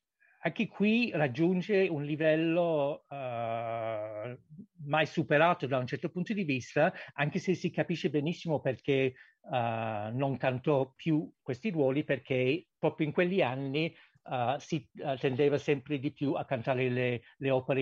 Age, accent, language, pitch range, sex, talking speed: 60-79, native, Italian, 130-155 Hz, male, 140 wpm